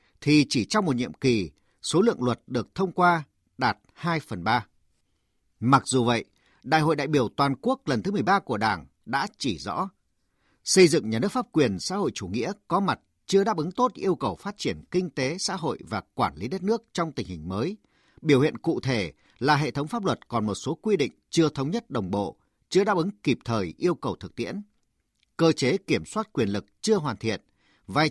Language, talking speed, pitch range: Vietnamese, 220 wpm, 120-185 Hz